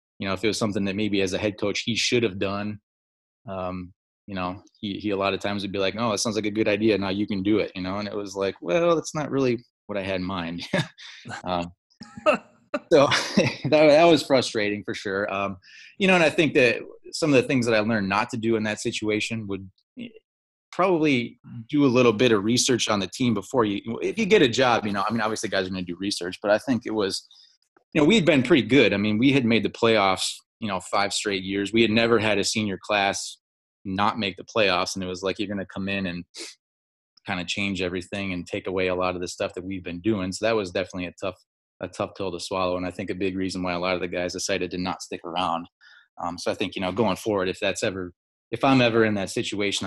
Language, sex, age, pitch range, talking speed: English, male, 20-39, 95-110 Hz, 260 wpm